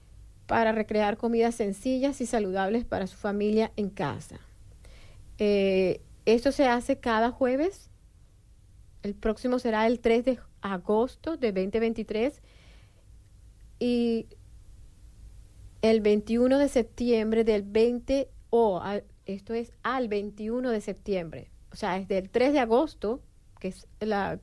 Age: 30-49